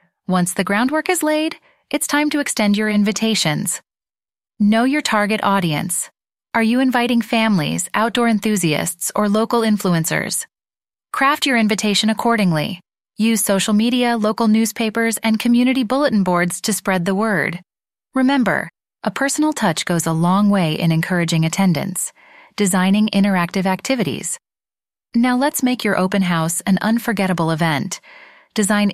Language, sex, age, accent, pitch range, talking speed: English, female, 30-49, American, 180-230 Hz, 135 wpm